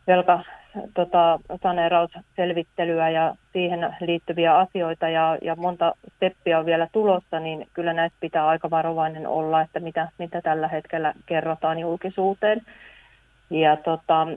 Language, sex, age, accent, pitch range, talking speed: Finnish, female, 30-49, native, 160-180 Hz, 120 wpm